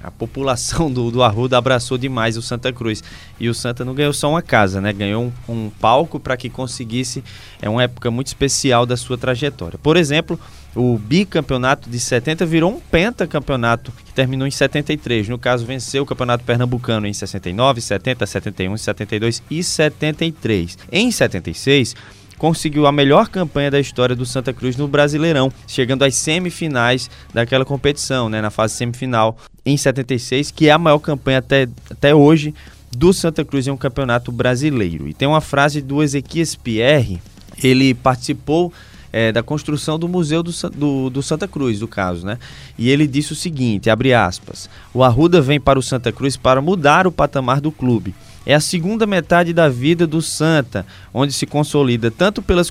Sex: male